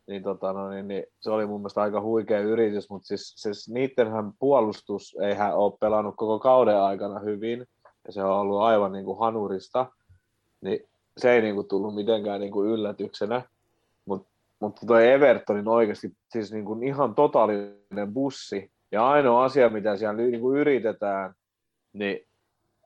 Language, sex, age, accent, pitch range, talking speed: Finnish, male, 30-49, native, 100-125 Hz, 160 wpm